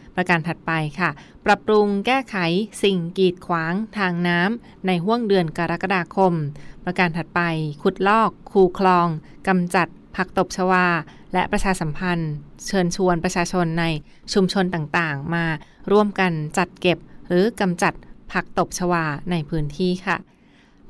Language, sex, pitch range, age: Thai, female, 170-200 Hz, 20-39